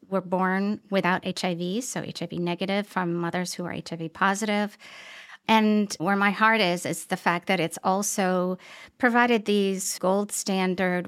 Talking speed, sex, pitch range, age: 150 wpm, female, 180-215 Hz, 50-69